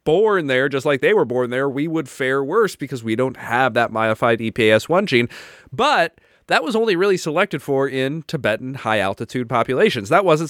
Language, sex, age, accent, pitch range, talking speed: English, male, 30-49, American, 110-145 Hz, 190 wpm